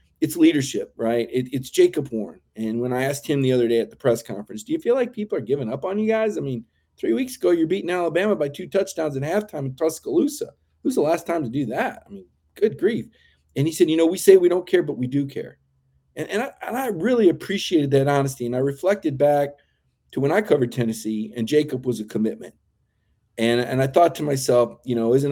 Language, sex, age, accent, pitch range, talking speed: English, male, 40-59, American, 120-180 Hz, 240 wpm